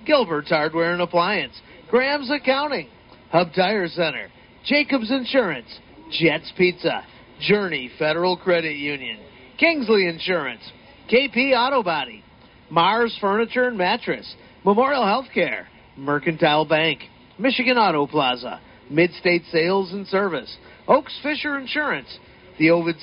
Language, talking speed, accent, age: English, 110 wpm, American, 40-59